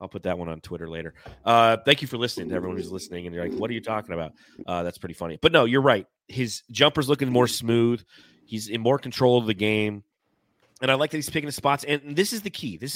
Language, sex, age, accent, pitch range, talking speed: English, male, 30-49, American, 100-130 Hz, 270 wpm